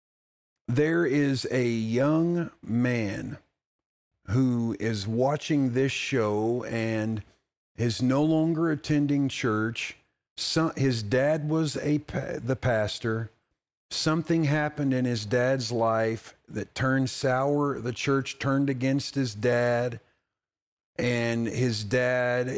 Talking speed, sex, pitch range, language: 110 wpm, male, 110-135 Hz, English